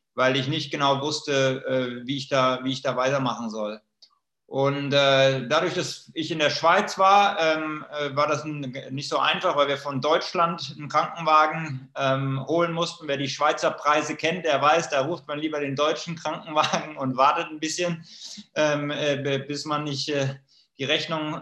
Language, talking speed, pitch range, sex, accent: German, 160 wpm, 135-160 Hz, male, German